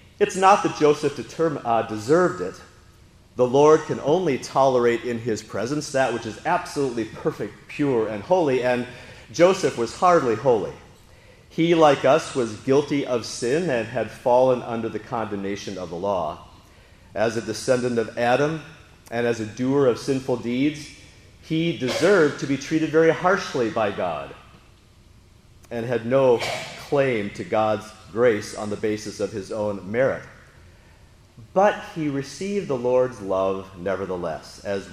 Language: English